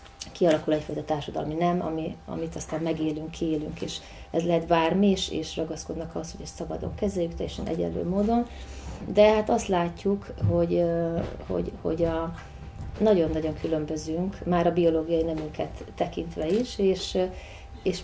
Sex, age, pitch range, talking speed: female, 30-49, 155-180 Hz, 140 wpm